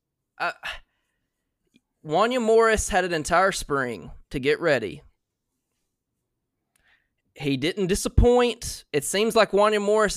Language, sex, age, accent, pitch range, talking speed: English, male, 20-39, American, 155-210 Hz, 105 wpm